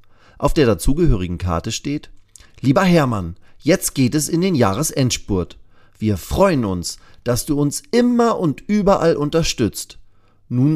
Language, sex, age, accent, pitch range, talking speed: German, male, 40-59, German, 100-145 Hz, 135 wpm